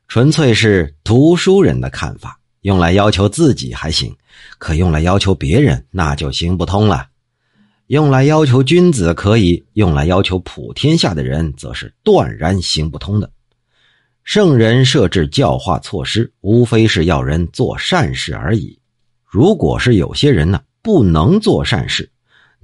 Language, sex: Chinese, male